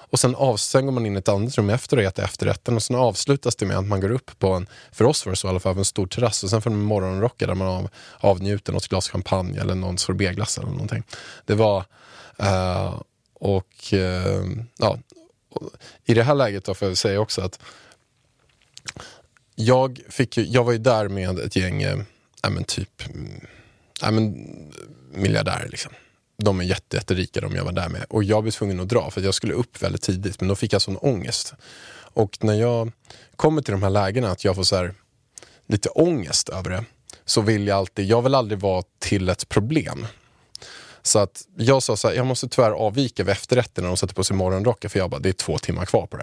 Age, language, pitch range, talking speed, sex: 20-39, Swedish, 95-120 Hz, 215 wpm, male